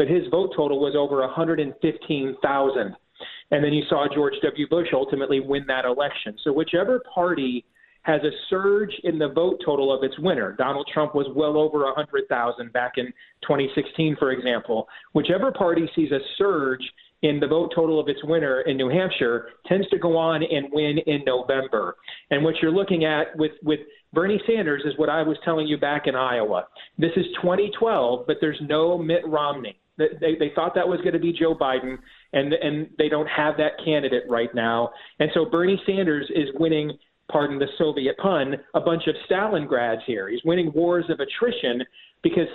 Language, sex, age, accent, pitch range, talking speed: English, male, 40-59, American, 145-165 Hz, 185 wpm